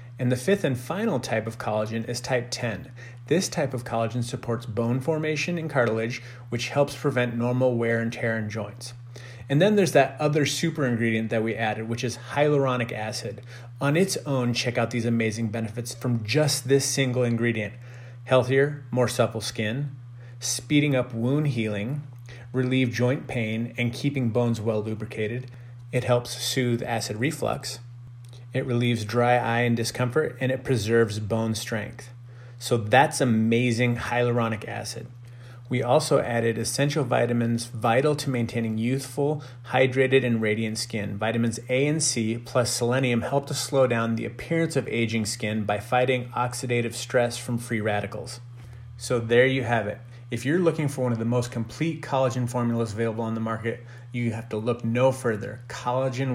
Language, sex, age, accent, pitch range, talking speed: English, male, 30-49, American, 115-130 Hz, 165 wpm